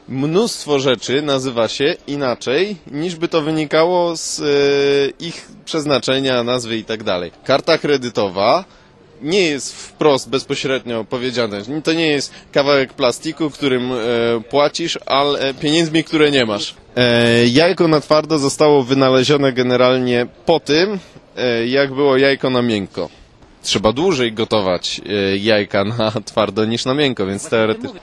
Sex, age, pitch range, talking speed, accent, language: male, 20-39, 120-155 Hz, 135 wpm, Polish, English